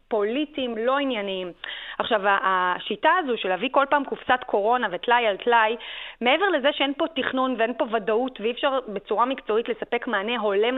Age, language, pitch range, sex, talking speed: 30-49, Hebrew, 225-305 Hz, female, 165 wpm